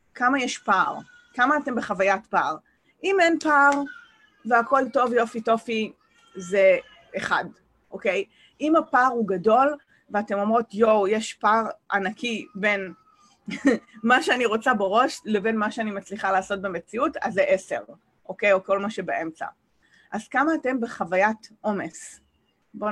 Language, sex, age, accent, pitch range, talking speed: English, female, 30-49, Israeli, 195-255 Hz, 130 wpm